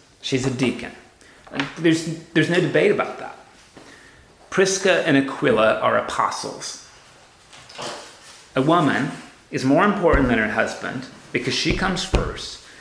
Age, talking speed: 30-49, 120 wpm